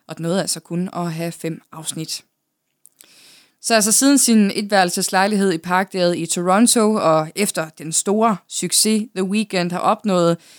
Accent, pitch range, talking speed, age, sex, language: native, 175-220 Hz, 155 wpm, 20-39, female, Danish